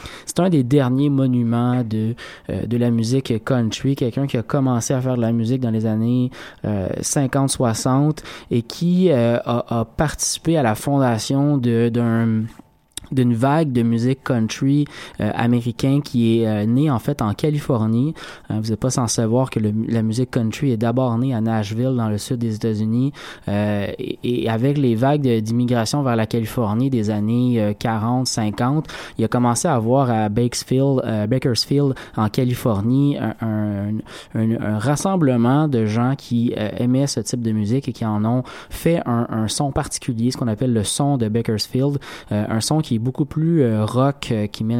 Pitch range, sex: 110-135 Hz, male